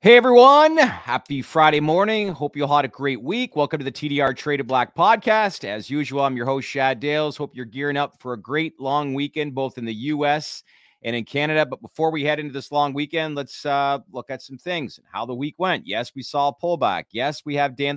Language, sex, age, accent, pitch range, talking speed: English, male, 30-49, American, 120-150 Hz, 235 wpm